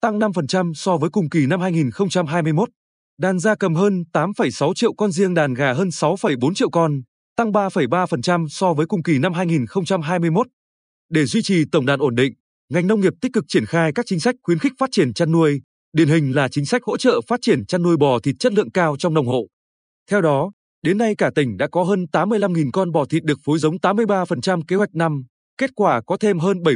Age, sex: 20-39, male